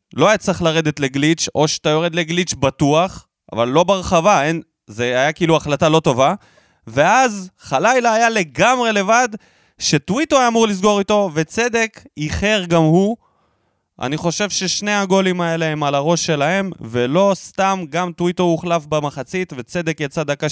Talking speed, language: 150 wpm, Hebrew